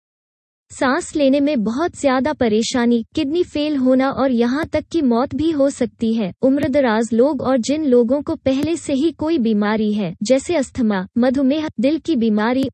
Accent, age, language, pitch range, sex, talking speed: native, 20-39, Hindi, 235-290 Hz, female, 170 wpm